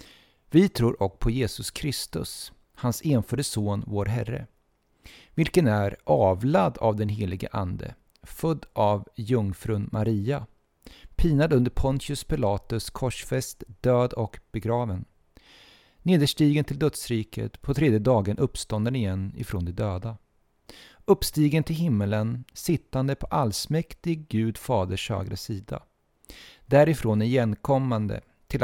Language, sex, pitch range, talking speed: Swedish, male, 100-135 Hz, 115 wpm